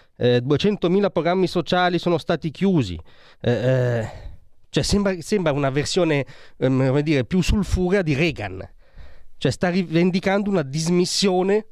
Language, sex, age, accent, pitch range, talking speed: Italian, male, 30-49, native, 115-170 Hz, 120 wpm